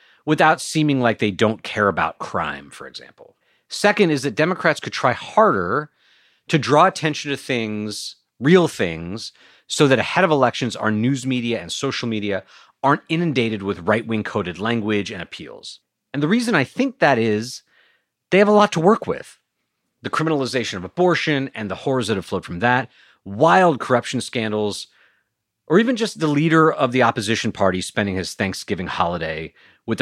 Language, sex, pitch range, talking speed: English, male, 110-155 Hz, 170 wpm